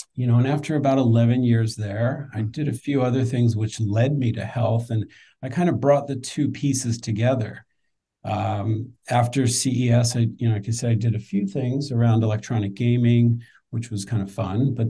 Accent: American